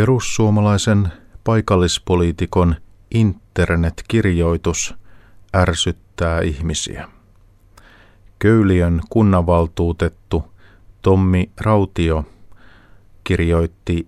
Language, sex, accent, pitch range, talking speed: Finnish, male, native, 85-100 Hz, 45 wpm